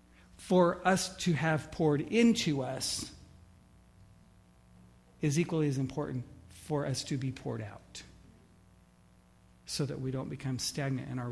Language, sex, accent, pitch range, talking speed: English, male, American, 90-150 Hz, 135 wpm